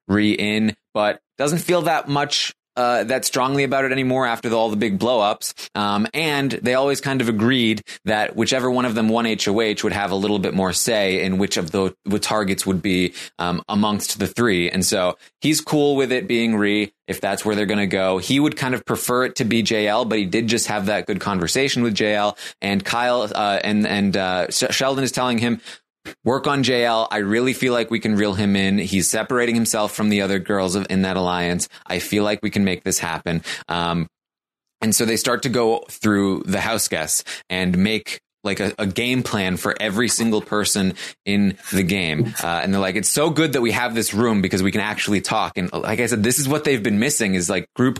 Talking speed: 225 wpm